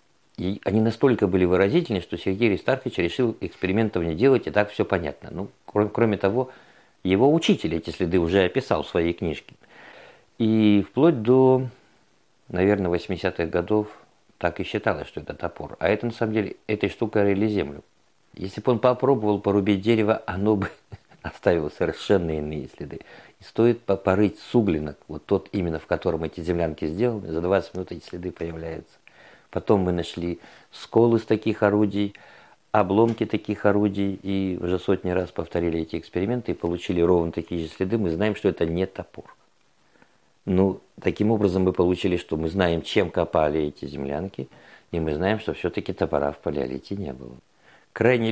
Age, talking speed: 50-69, 165 wpm